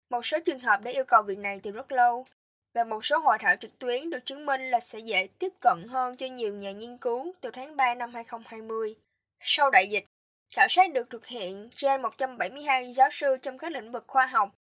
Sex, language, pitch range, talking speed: female, Vietnamese, 225-285 Hz, 230 wpm